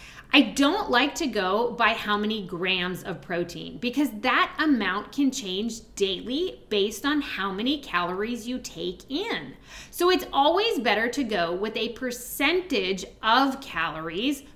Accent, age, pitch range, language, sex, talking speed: American, 20-39, 205-280 Hz, English, female, 150 wpm